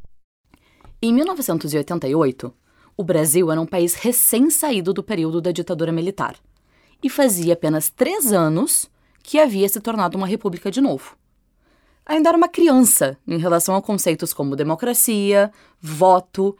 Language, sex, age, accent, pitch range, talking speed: Portuguese, female, 20-39, Brazilian, 170-270 Hz, 135 wpm